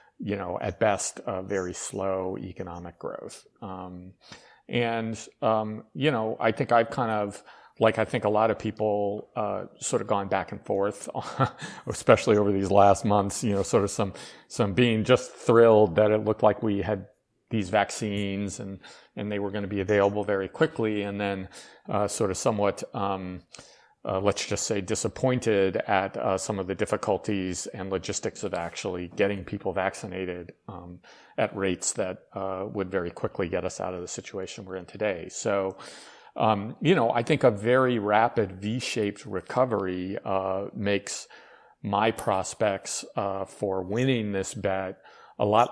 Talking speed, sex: 170 wpm, male